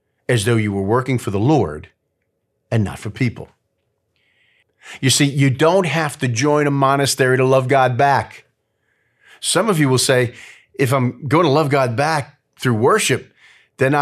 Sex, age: male, 40-59